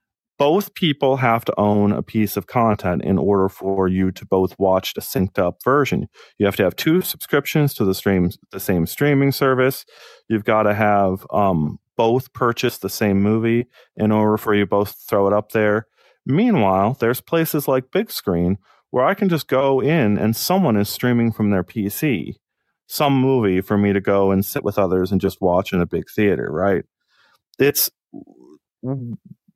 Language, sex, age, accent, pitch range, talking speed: English, male, 30-49, American, 100-135 Hz, 185 wpm